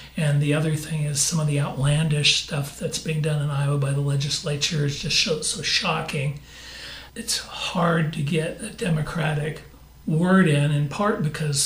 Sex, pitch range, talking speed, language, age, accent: male, 145-165 Hz, 175 wpm, English, 60-79, American